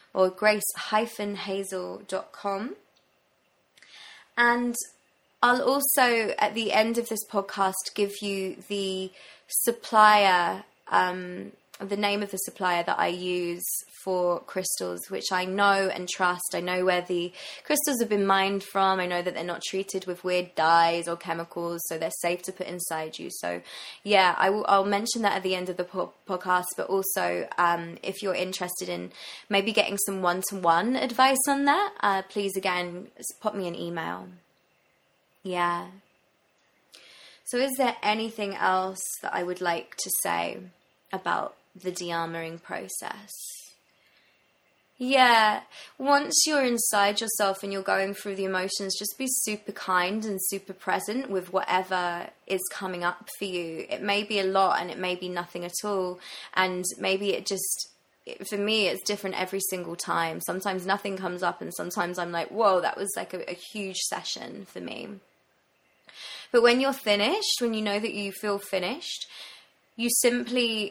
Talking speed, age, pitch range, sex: 155 wpm, 20-39, 180-210 Hz, female